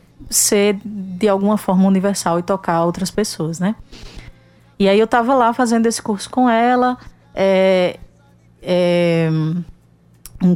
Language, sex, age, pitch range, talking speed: Portuguese, female, 20-39, 180-225 Hz, 130 wpm